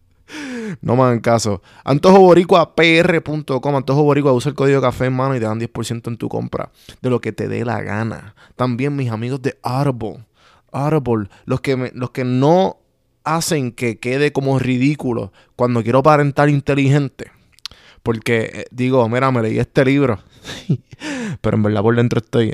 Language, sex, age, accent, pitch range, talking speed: Spanish, male, 20-39, Venezuelan, 120-160 Hz, 170 wpm